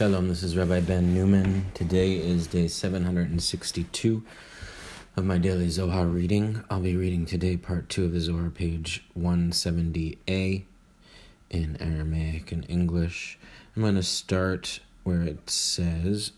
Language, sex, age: English, male, 30-49